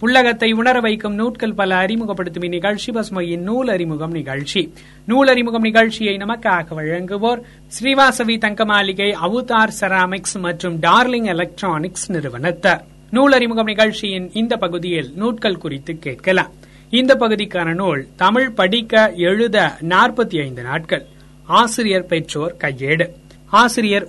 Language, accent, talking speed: Tamil, native, 100 wpm